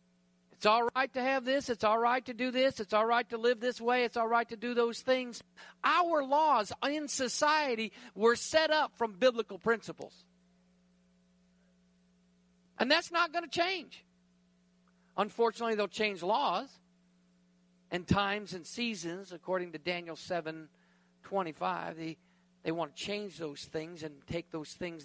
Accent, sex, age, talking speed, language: American, male, 50-69, 160 wpm, English